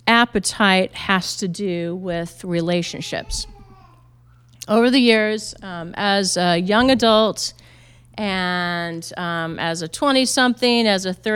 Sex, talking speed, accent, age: female, 110 wpm, American, 40-59